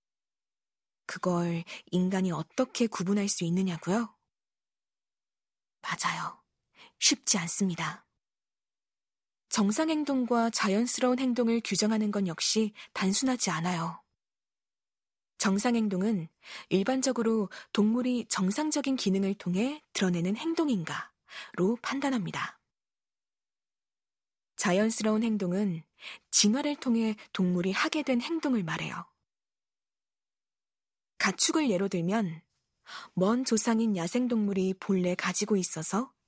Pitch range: 185-245 Hz